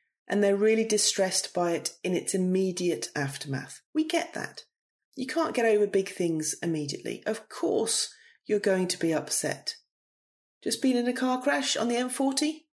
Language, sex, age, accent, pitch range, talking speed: English, female, 30-49, British, 180-245 Hz, 175 wpm